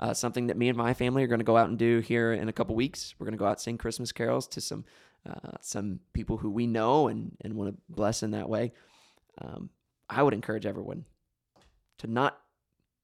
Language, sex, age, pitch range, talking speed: English, male, 20-39, 110-130 Hz, 230 wpm